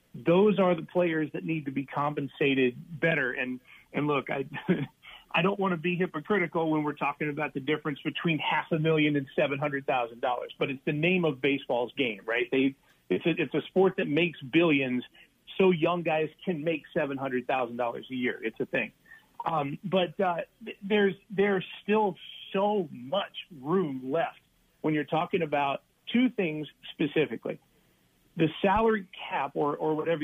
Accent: American